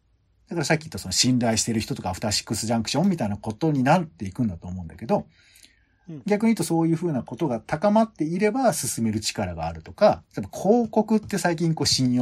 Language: Japanese